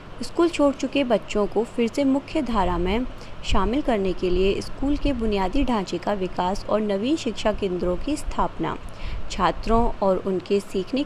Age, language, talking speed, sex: 20-39, Hindi, 165 wpm, female